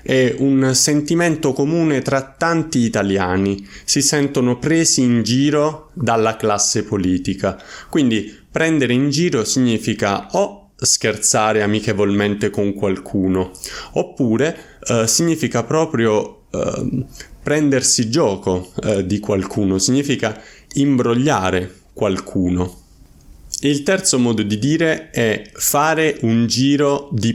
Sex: male